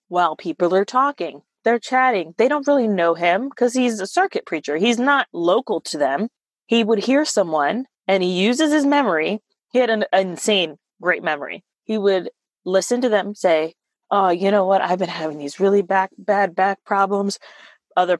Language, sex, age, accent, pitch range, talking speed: English, female, 20-39, American, 195-270 Hz, 180 wpm